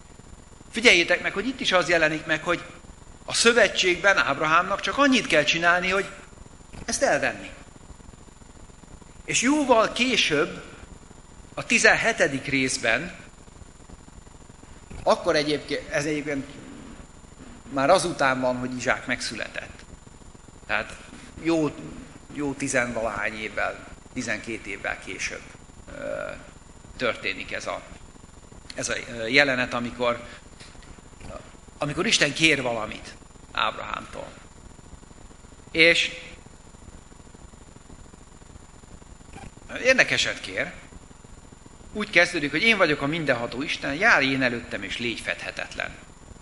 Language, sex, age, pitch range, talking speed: Hungarian, male, 50-69, 120-175 Hz, 95 wpm